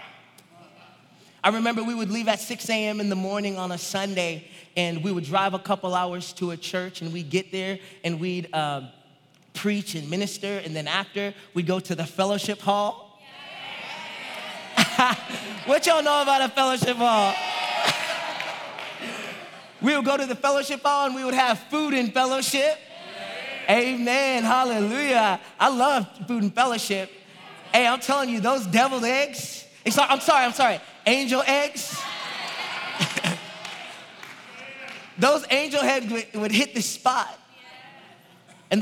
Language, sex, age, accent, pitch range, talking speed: English, male, 30-49, American, 190-260 Hz, 145 wpm